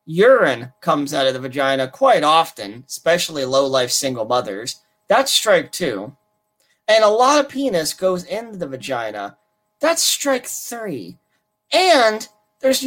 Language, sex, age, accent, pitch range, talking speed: English, male, 30-49, American, 165-255 Hz, 135 wpm